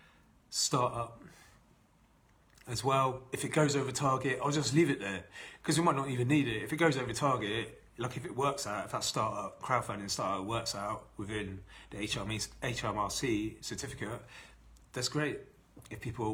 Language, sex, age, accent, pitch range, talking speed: English, male, 30-49, British, 115-140 Hz, 165 wpm